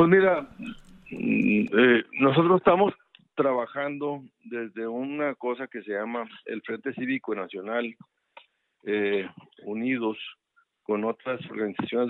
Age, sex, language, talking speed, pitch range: 50-69, male, Spanish, 105 wpm, 110-170 Hz